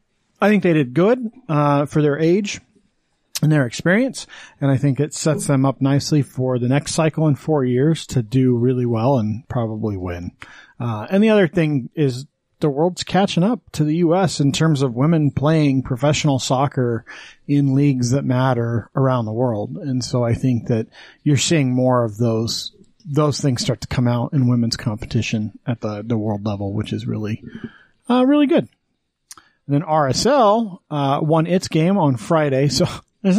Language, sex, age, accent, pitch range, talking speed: English, male, 40-59, American, 125-155 Hz, 185 wpm